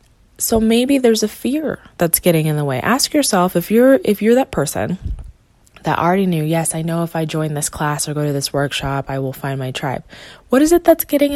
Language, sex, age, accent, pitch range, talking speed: English, female, 20-39, American, 145-185 Hz, 235 wpm